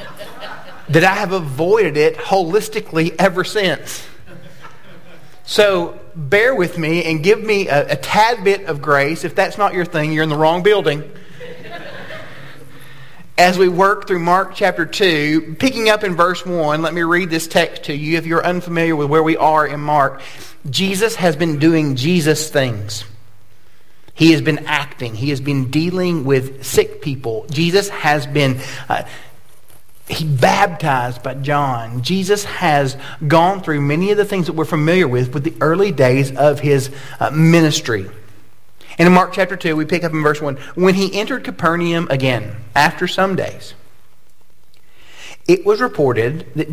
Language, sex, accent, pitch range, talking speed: English, male, American, 140-185 Hz, 160 wpm